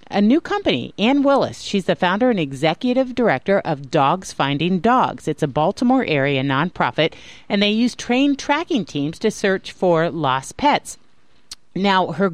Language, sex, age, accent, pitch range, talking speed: English, female, 40-59, American, 150-220 Hz, 155 wpm